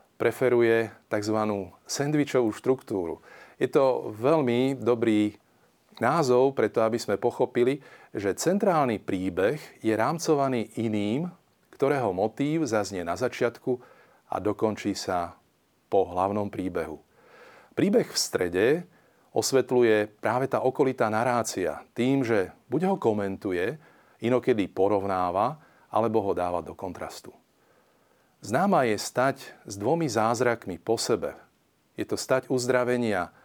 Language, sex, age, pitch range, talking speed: Slovak, male, 40-59, 105-130 Hz, 115 wpm